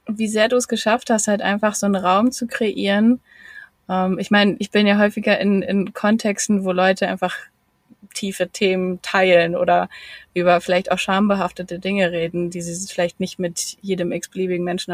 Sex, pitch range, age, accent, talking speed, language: female, 190-225 Hz, 20-39, German, 175 wpm, German